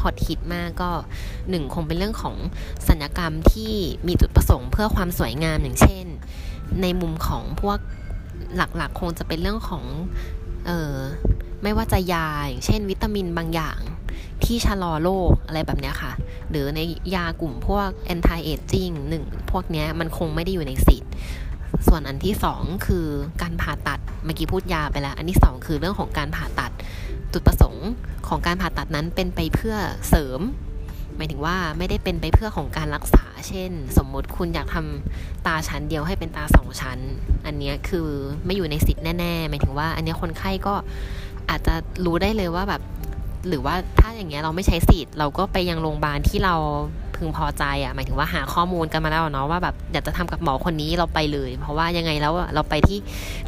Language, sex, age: Thai, female, 20-39